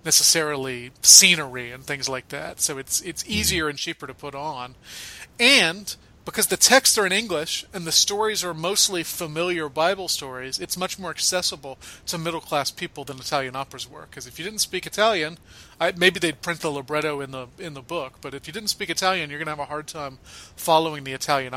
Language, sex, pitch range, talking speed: English, male, 135-185 Hz, 205 wpm